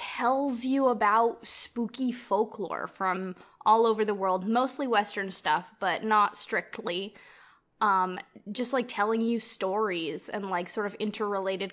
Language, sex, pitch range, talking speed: English, female, 190-230 Hz, 140 wpm